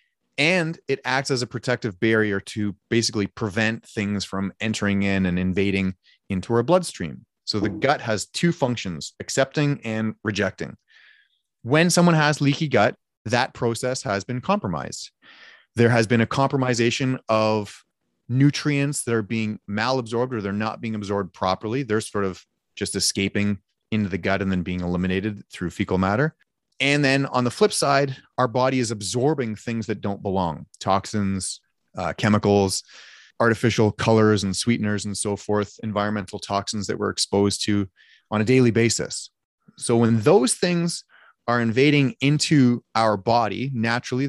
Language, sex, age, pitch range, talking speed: English, male, 30-49, 100-130 Hz, 155 wpm